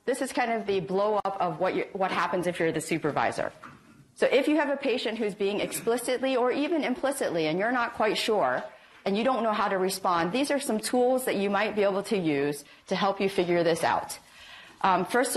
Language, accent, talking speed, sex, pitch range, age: English, American, 225 wpm, female, 170-220 Hz, 30-49